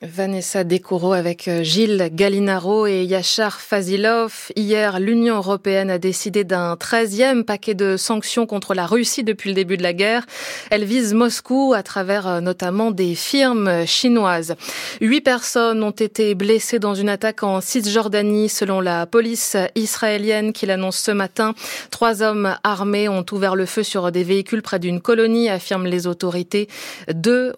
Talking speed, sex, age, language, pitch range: 155 wpm, female, 20-39, French, 190-235 Hz